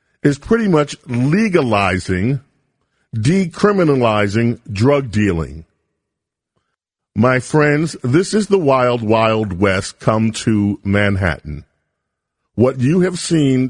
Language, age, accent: English, 40-59, American